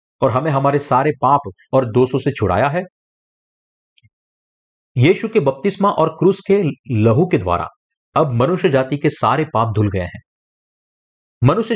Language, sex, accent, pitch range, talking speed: Hindi, male, native, 125-170 Hz, 150 wpm